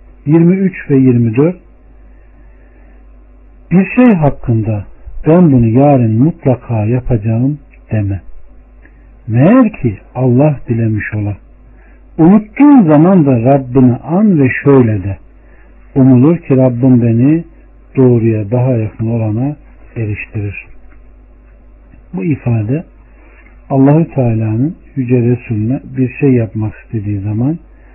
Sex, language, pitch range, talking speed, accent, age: male, Turkish, 115-145 Hz, 95 wpm, native, 60-79